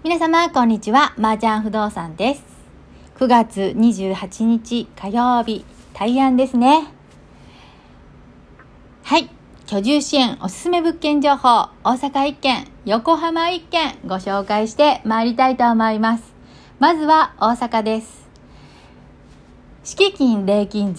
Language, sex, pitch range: Japanese, female, 210-295 Hz